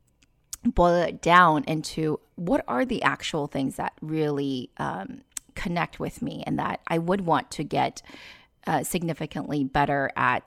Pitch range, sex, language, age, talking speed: 150-180 Hz, female, English, 30-49, 150 wpm